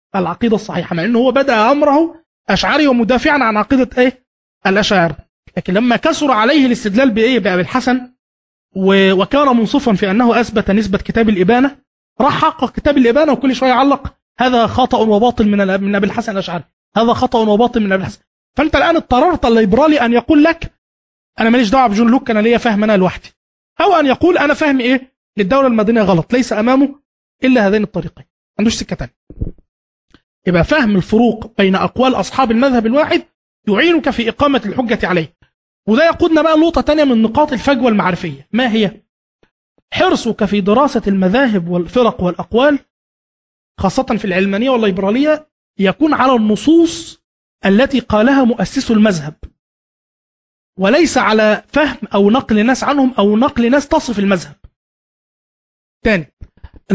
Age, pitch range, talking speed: 20-39, 205-265 Hz, 145 wpm